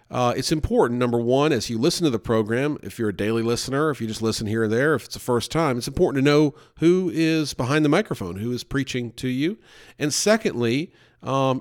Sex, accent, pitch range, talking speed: male, American, 115-135 Hz, 235 wpm